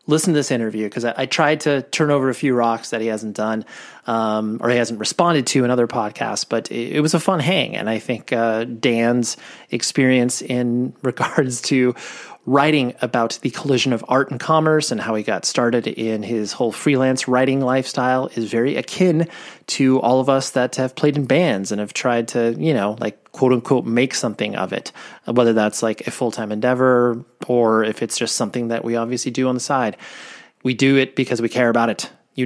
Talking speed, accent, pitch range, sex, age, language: 210 wpm, American, 115-140 Hz, male, 30-49, English